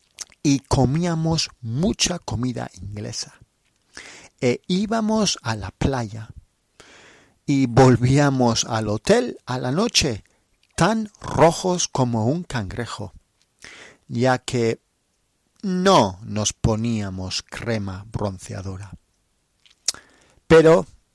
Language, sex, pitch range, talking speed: Spanish, male, 105-140 Hz, 85 wpm